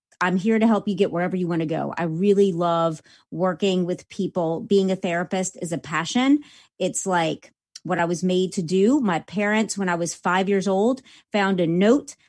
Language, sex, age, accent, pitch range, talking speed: English, female, 30-49, American, 180-220 Hz, 205 wpm